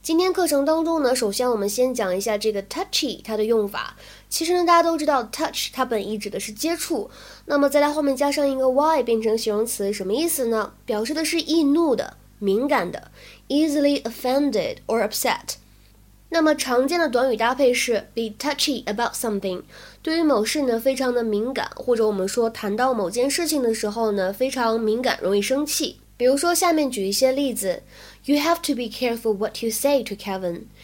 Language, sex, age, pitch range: Chinese, female, 20-39, 215-285 Hz